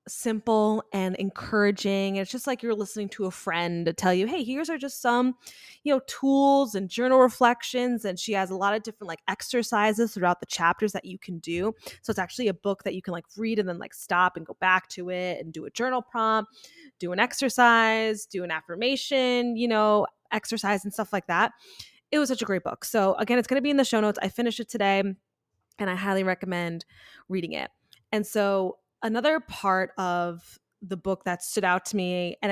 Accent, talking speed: American, 215 wpm